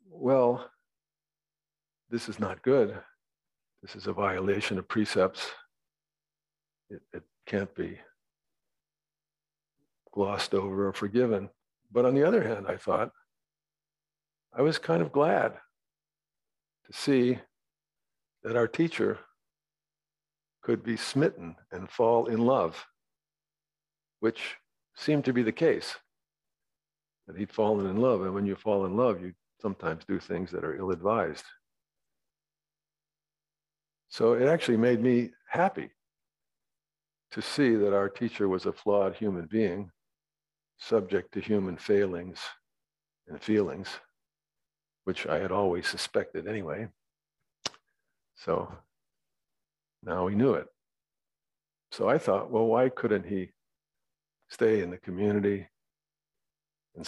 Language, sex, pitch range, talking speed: English, male, 100-155 Hz, 120 wpm